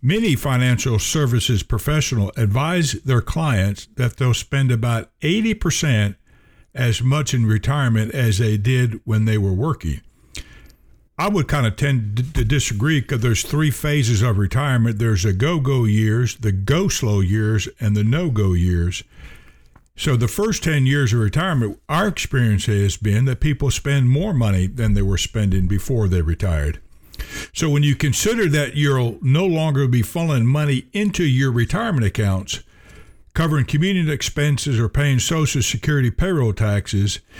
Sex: male